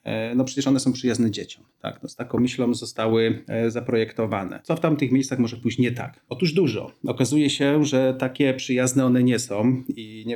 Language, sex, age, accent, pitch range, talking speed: Polish, male, 30-49, native, 115-135 Hz, 185 wpm